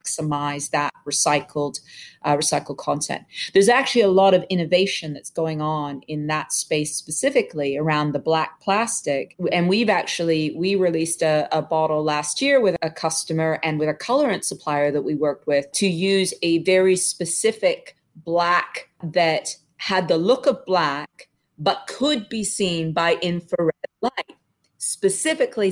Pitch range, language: 155-195 Hz, English